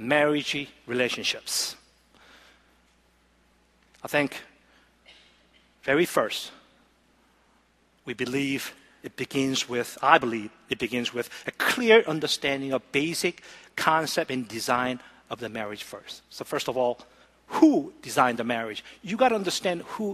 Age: 50-69